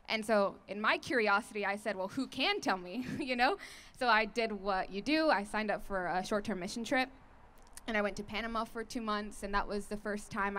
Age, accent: 10-29, American